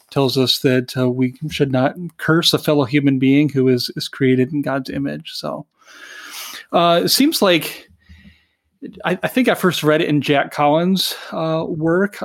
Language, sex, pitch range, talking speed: English, male, 130-150 Hz, 175 wpm